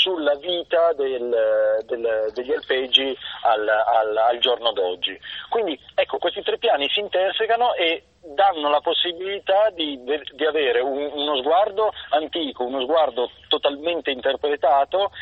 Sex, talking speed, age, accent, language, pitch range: male, 130 wpm, 30-49, native, Italian, 125-185 Hz